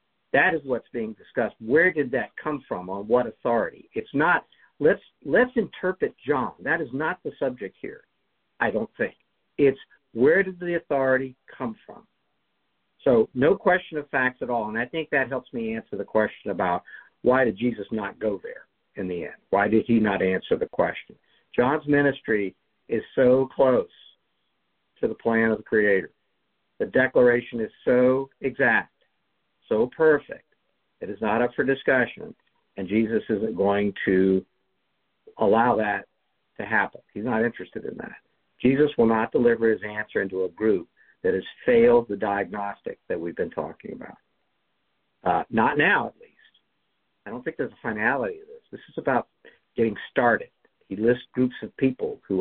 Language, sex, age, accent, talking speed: English, male, 50-69, American, 170 wpm